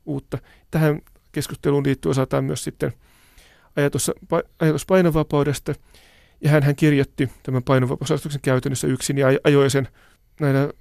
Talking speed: 120 wpm